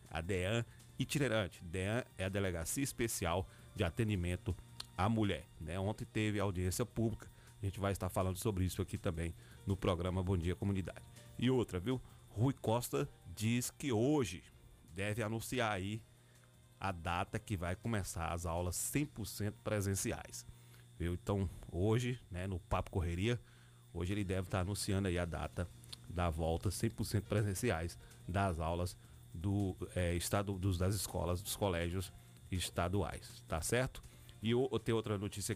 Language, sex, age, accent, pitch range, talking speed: Portuguese, male, 30-49, Brazilian, 90-115 Hz, 145 wpm